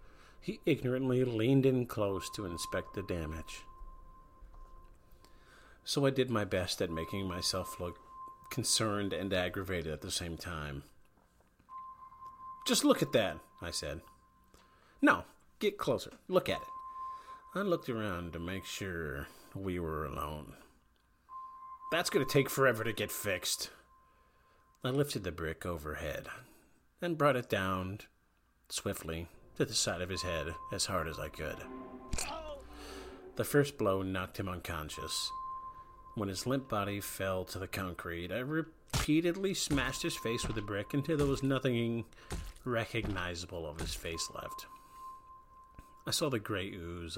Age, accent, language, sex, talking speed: 40-59, American, English, male, 140 wpm